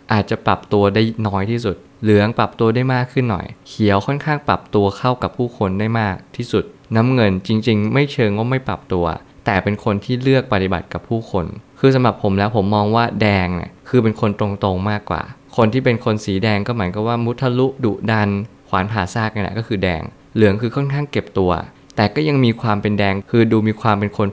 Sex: male